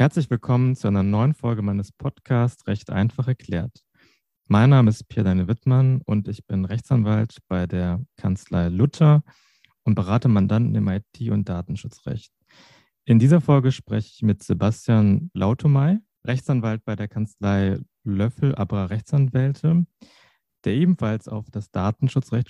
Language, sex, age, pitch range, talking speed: German, male, 30-49, 105-130 Hz, 140 wpm